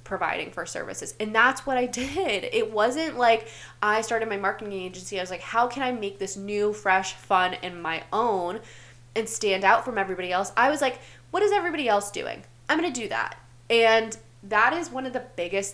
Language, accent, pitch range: English, American, 170-225 Hz